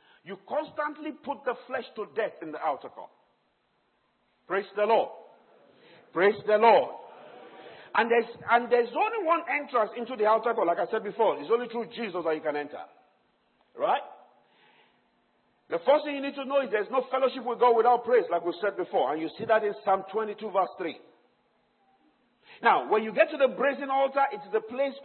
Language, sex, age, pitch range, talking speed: English, male, 50-69, 200-270 Hz, 190 wpm